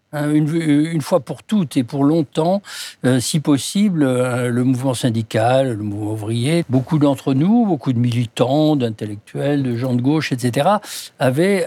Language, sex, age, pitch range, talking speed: French, male, 60-79, 120-155 Hz, 160 wpm